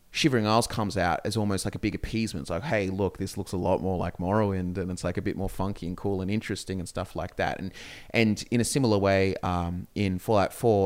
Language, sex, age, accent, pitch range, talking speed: English, male, 20-39, Australian, 90-105 Hz, 255 wpm